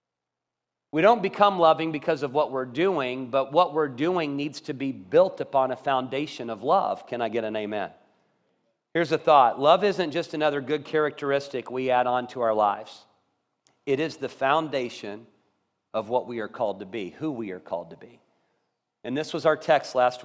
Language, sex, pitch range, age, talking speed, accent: English, male, 120-150 Hz, 40-59, 195 wpm, American